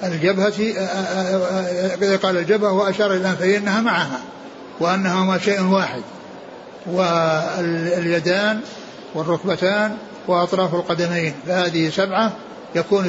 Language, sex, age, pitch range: Arabic, male, 60-79, 180-205 Hz